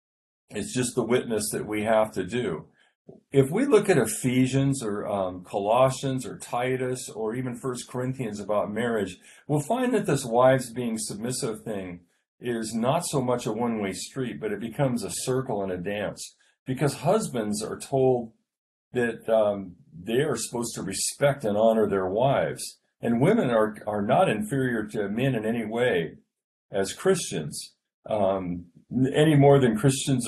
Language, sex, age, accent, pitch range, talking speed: English, male, 50-69, American, 105-135 Hz, 160 wpm